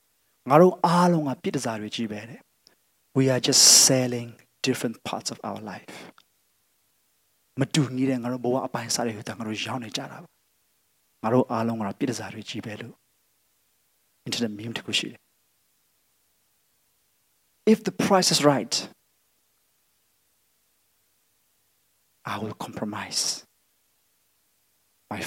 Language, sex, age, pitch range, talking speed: English, male, 30-49, 115-150 Hz, 45 wpm